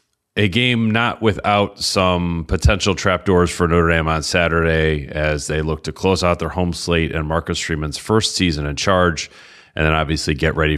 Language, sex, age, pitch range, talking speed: English, male, 30-49, 75-90 Hz, 185 wpm